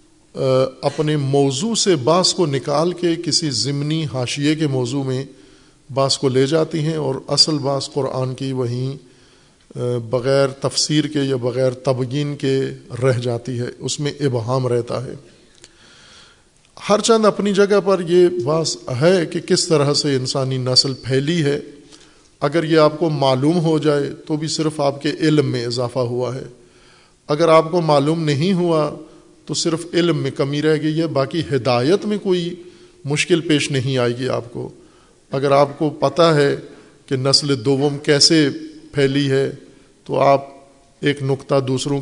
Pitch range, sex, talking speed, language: 135-160 Hz, male, 160 wpm, Urdu